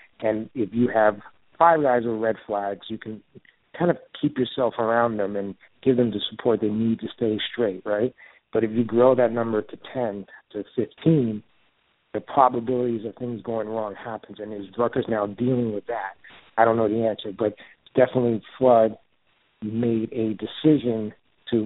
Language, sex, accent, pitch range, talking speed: English, male, American, 110-125 Hz, 175 wpm